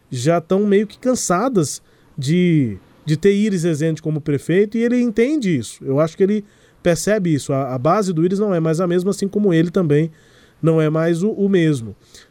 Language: Portuguese